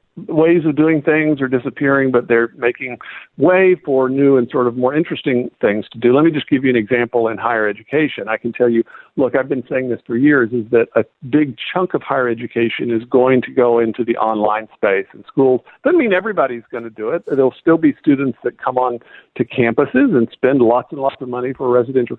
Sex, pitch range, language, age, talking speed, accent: male, 120-145 Hz, English, 50-69, 230 wpm, American